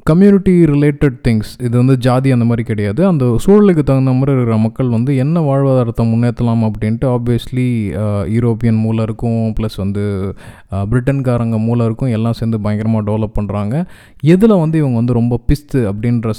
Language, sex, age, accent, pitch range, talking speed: Tamil, male, 20-39, native, 110-135 Hz, 150 wpm